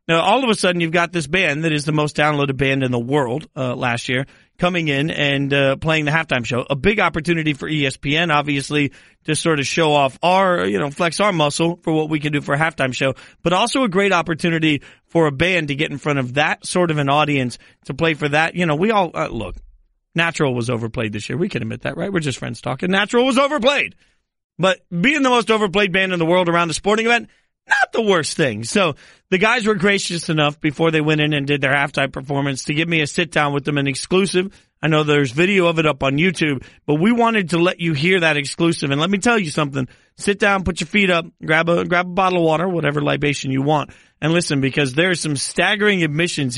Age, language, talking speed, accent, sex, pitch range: 40-59, English, 245 wpm, American, male, 140-180 Hz